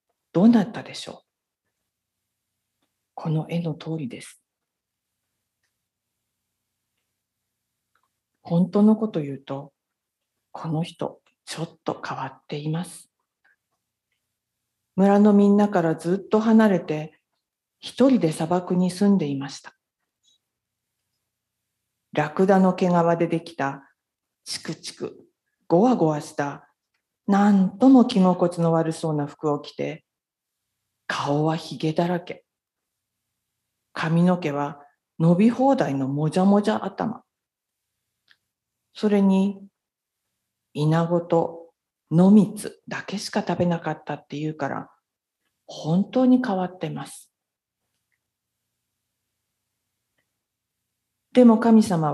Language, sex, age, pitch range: Japanese, female, 50-69, 145-195 Hz